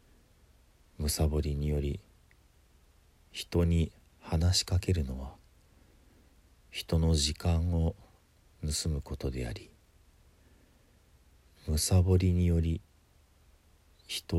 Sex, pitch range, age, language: male, 75-85 Hz, 40-59, Japanese